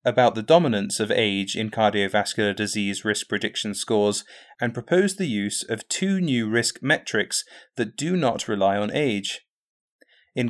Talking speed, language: 155 wpm, English